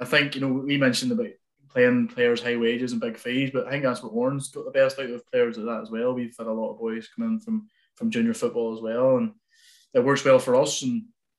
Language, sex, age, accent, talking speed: English, male, 20-39, British, 275 wpm